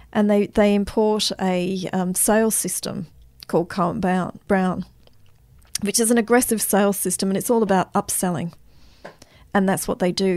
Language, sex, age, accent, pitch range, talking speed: English, female, 40-59, Australian, 180-205 Hz, 155 wpm